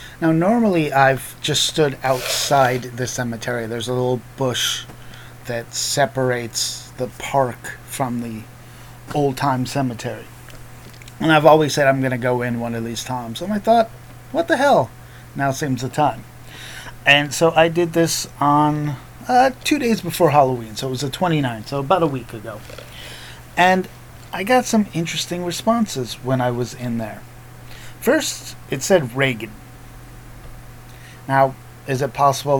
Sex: male